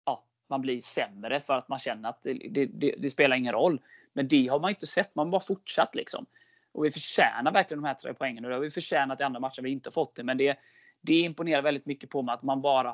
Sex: male